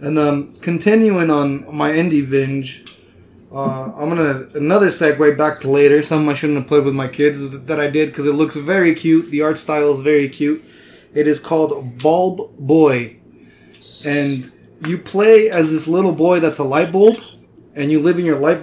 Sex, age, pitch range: male, 20-39, 145-185 Hz